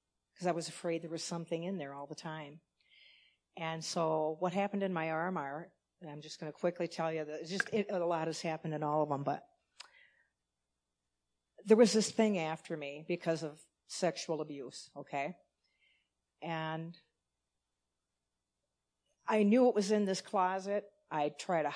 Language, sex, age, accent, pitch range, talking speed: English, female, 50-69, American, 145-175 Hz, 170 wpm